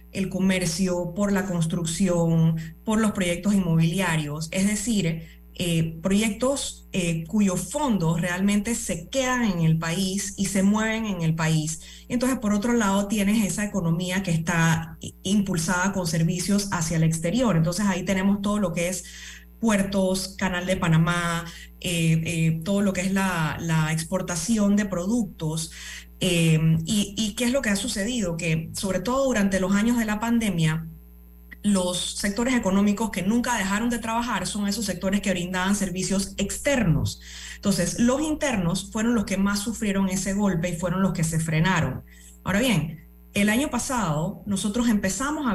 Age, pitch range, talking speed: 20-39, 170-210 Hz, 160 wpm